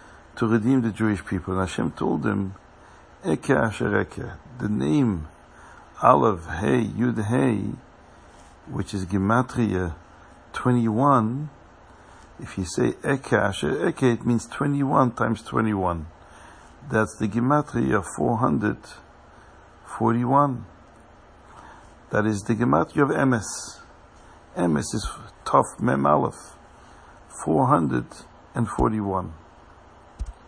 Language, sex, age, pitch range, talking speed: English, male, 60-79, 95-125 Hz, 100 wpm